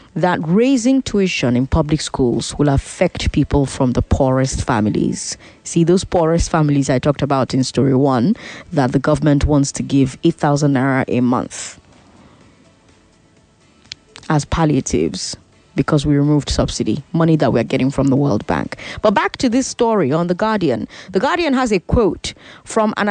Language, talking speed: English, 165 wpm